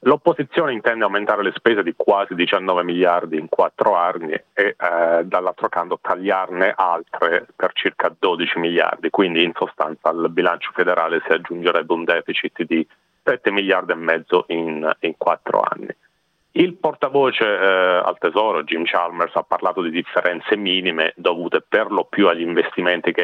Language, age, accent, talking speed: Italian, 40-59, native, 150 wpm